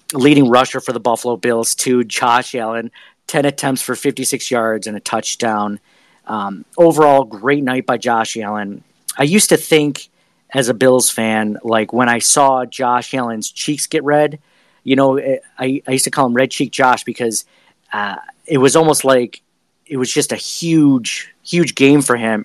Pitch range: 115-145 Hz